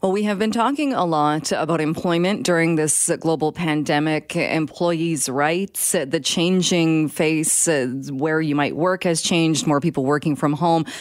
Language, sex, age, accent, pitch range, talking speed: English, female, 30-49, American, 150-180 Hz, 165 wpm